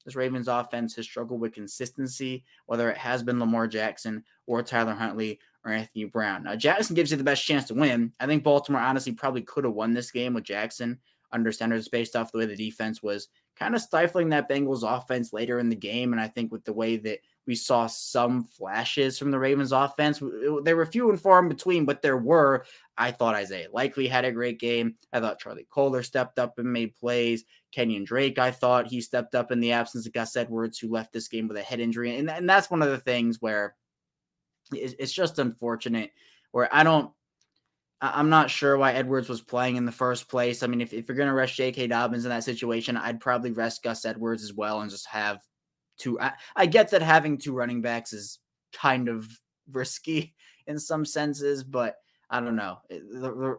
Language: English